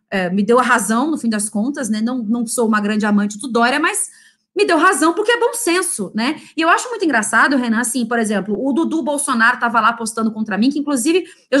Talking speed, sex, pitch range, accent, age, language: 245 wpm, female, 220-315 Hz, Brazilian, 20-39, Portuguese